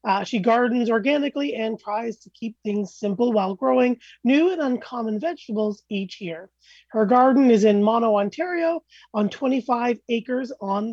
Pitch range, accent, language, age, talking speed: 205-255 Hz, American, English, 30-49, 155 wpm